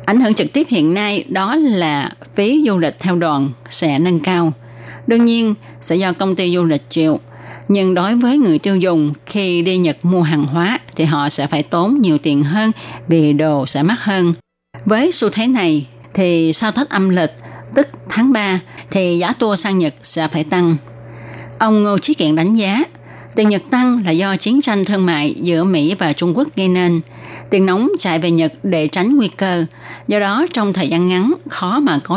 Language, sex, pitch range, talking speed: Vietnamese, female, 155-220 Hz, 205 wpm